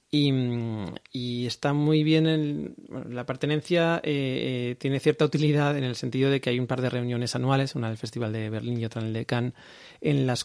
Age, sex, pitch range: 30-49, male, 115-135 Hz